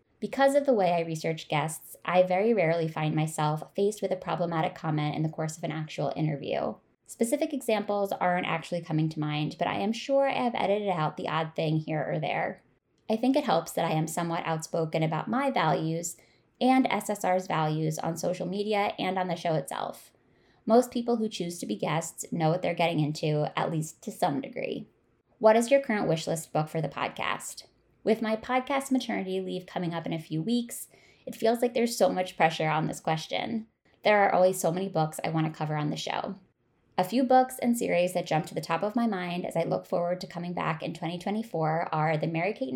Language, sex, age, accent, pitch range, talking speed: English, female, 20-39, American, 160-220 Hz, 215 wpm